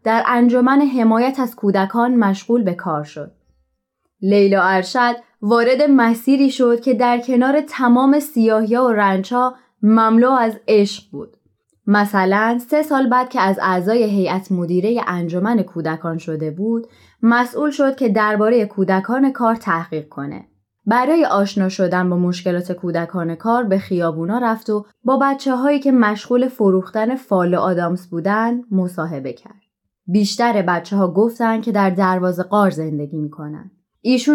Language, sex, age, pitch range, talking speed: Persian, female, 20-39, 180-245 Hz, 140 wpm